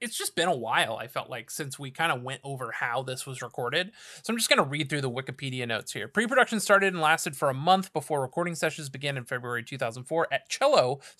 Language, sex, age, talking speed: English, male, 30-49, 240 wpm